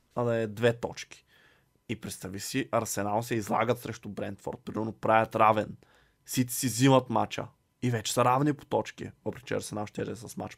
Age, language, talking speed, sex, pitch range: 20-39, Bulgarian, 180 wpm, male, 110-140 Hz